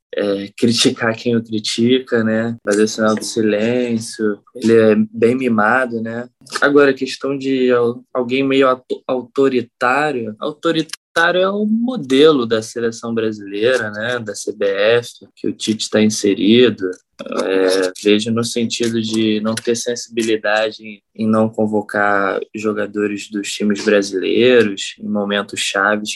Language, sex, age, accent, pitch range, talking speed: Portuguese, male, 20-39, Brazilian, 110-135 Hz, 130 wpm